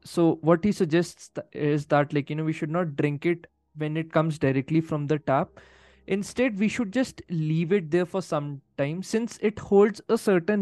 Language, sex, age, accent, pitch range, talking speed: Hindi, male, 20-39, native, 145-185 Hz, 210 wpm